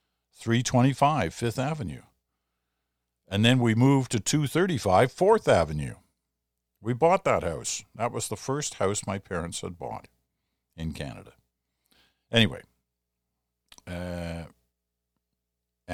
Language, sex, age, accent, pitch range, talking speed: English, male, 60-79, American, 85-115 Hz, 105 wpm